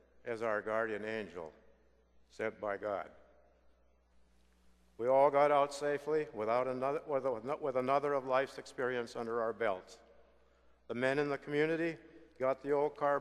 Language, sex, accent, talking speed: English, male, American, 140 wpm